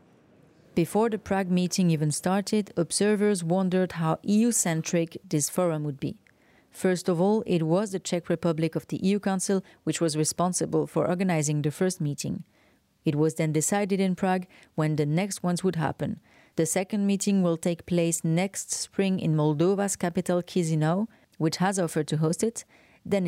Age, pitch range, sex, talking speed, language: 30-49, 160-200 Hz, female, 170 wpm, English